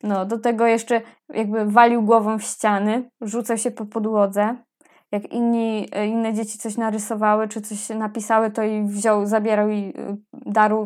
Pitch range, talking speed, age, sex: 210-235 Hz, 155 wpm, 20-39, female